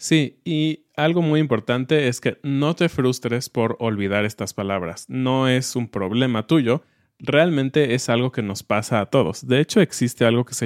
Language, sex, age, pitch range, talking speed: Spanish, male, 30-49, 115-145 Hz, 185 wpm